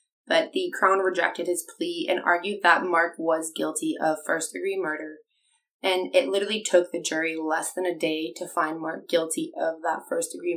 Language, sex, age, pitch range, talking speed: English, female, 20-39, 170-225 Hz, 180 wpm